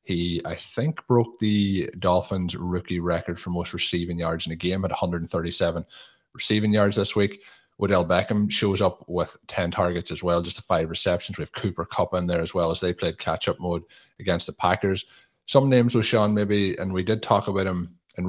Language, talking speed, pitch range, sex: English, 205 wpm, 85-100 Hz, male